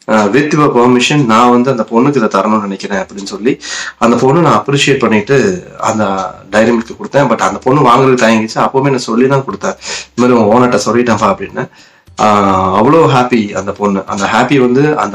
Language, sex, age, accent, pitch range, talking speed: Tamil, male, 30-49, native, 110-135 Hz, 75 wpm